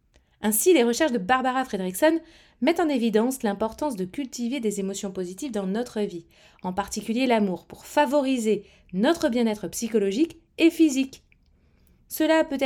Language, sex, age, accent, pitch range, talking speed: French, female, 30-49, French, 200-280 Hz, 140 wpm